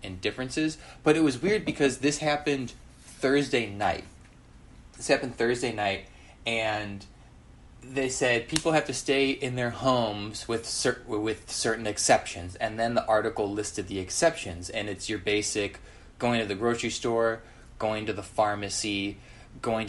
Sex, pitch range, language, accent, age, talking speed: male, 100-125 Hz, English, American, 20-39, 155 wpm